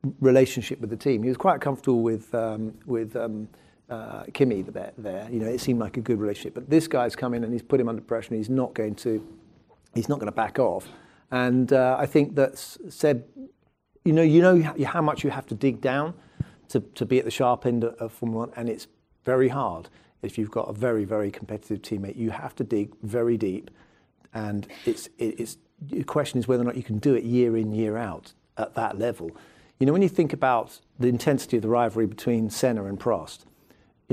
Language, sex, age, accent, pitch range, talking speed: English, male, 40-59, British, 110-135 Hz, 220 wpm